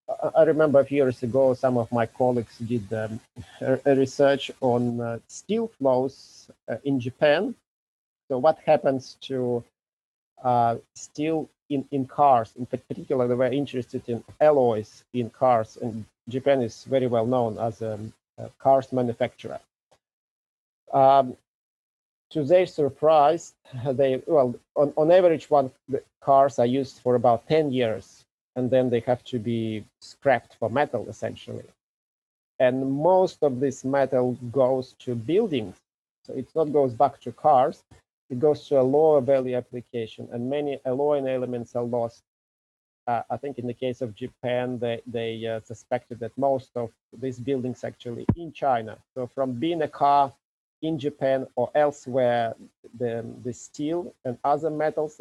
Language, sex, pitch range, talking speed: English, male, 120-140 Hz, 155 wpm